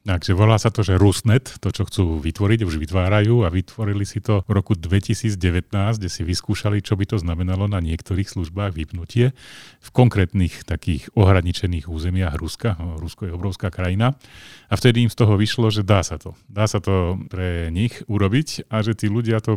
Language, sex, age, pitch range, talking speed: Slovak, male, 40-59, 85-105 Hz, 185 wpm